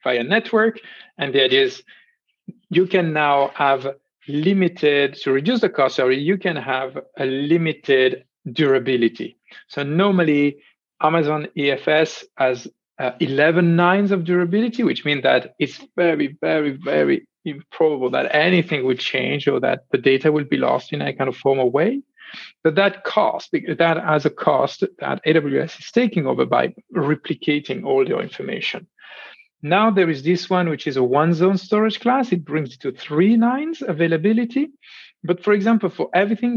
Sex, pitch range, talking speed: male, 145-200 Hz, 160 wpm